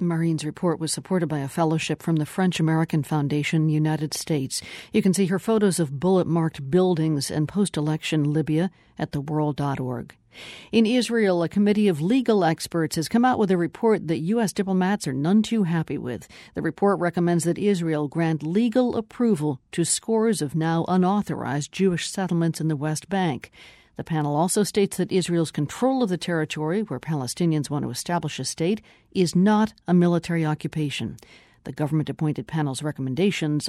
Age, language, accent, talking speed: 50-69, English, American, 165 wpm